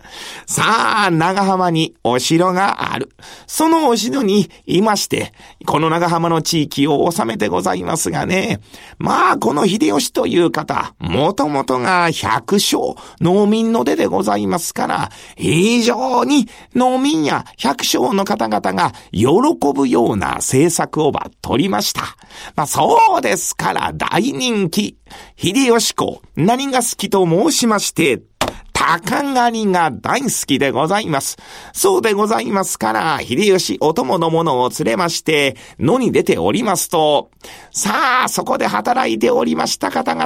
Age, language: 40-59, Japanese